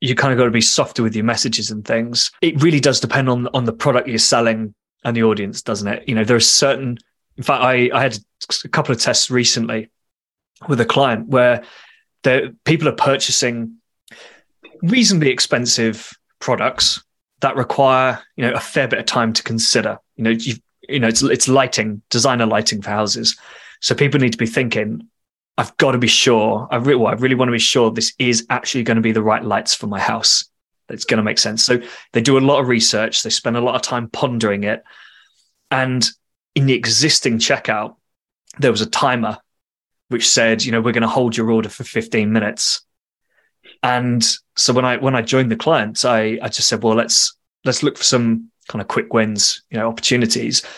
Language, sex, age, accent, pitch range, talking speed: English, male, 20-39, British, 115-130 Hz, 210 wpm